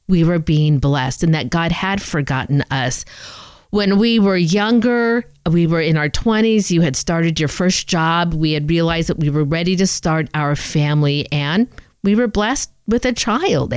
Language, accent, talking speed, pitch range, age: English, American, 185 wpm, 150-205 Hz, 50-69